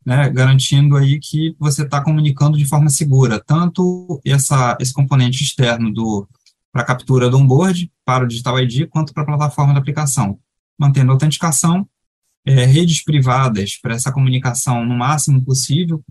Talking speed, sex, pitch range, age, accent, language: 155 wpm, male, 130-150 Hz, 20-39, Brazilian, Portuguese